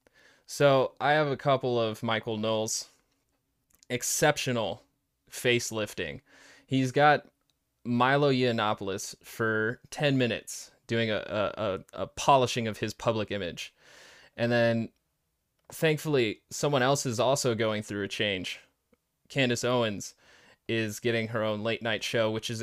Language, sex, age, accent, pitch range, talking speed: English, male, 20-39, American, 115-130 Hz, 130 wpm